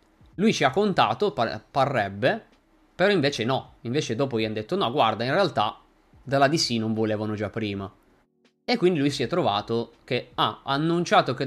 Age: 20-39